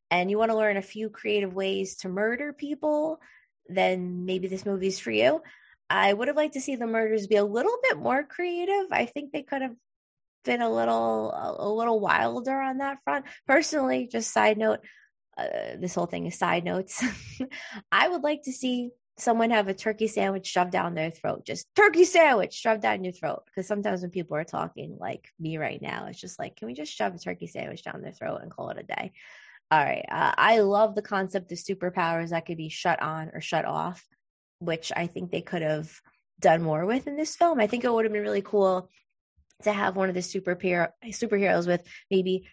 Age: 20-39